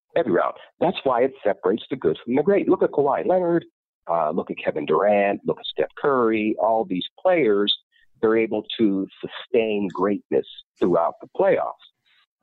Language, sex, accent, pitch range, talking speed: English, male, American, 110-180 Hz, 170 wpm